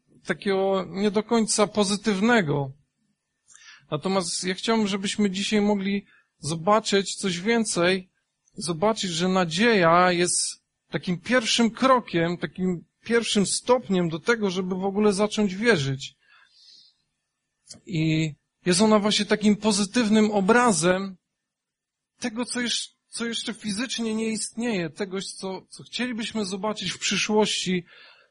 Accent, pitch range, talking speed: native, 170-215 Hz, 105 wpm